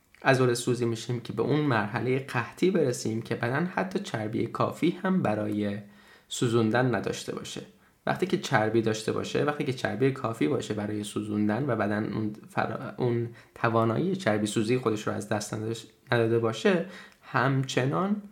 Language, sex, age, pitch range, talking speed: Persian, male, 10-29, 110-130 Hz, 145 wpm